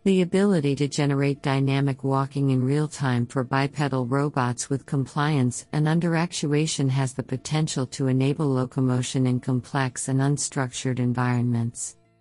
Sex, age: female, 50-69